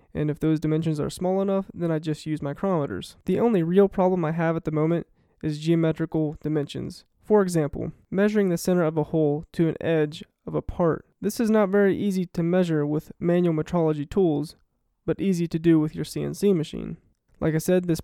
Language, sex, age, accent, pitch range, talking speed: English, male, 20-39, American, 155-180 Hz, 205 wpm